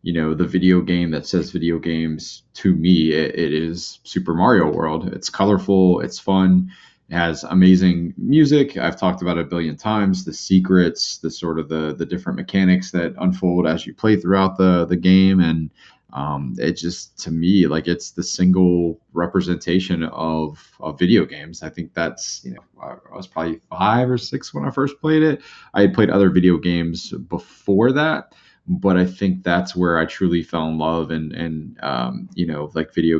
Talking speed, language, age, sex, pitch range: 190 wpm, English, 20-39, male, 80-95 Hz